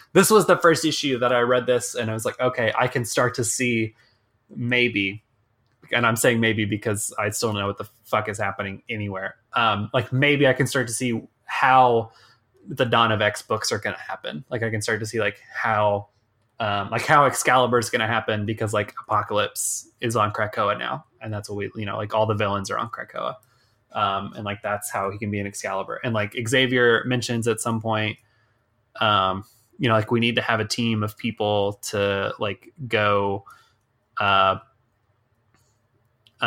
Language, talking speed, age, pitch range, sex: English, 200 wpm, 20-39, 105-120 Hz, male